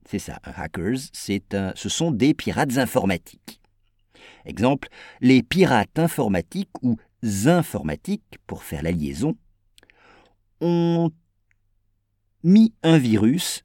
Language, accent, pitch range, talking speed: English, French, 100-160 Hz, 95 wpm